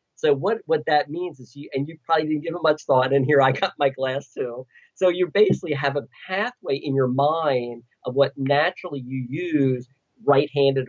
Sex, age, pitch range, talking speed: male, 50-69, 130-155 Hz, 205 wpm